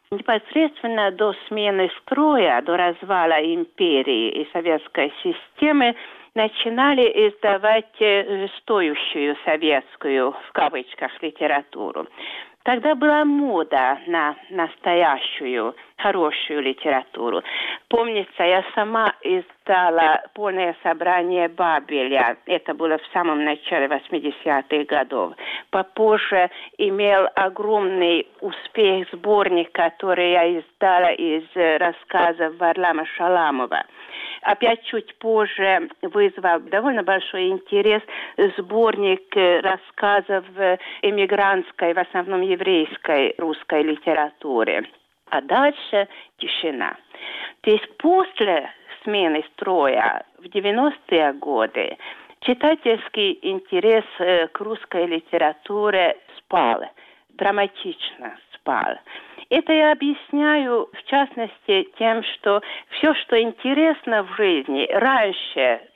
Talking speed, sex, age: 90 wpm, female, 50-69